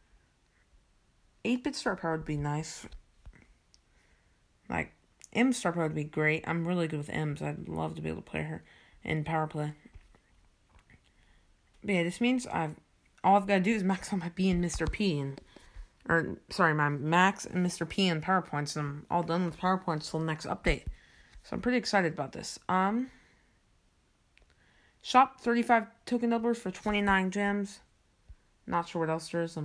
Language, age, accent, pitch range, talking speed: English, 30-49, American, 145-200 Hz, 175 wpm